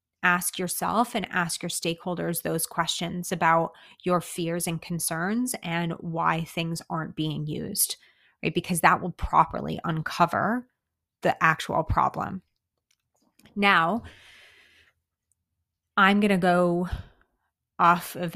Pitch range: 165-195 Hz